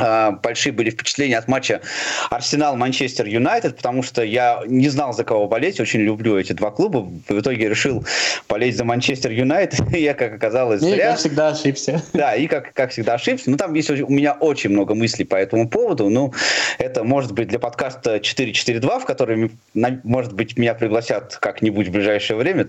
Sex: male